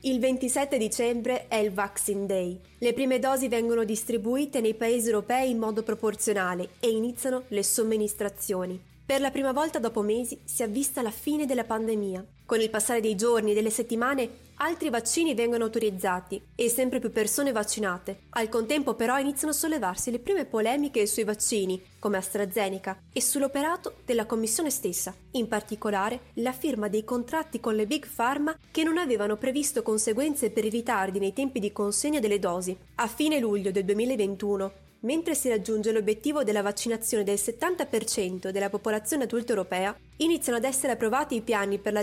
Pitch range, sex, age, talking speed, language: 210-260 Hz, female, 20-39, 170 wpm, Italian